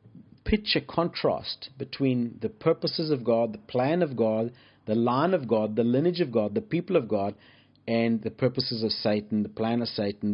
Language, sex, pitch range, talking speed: English, male, 110-140 Hz, 190 wpm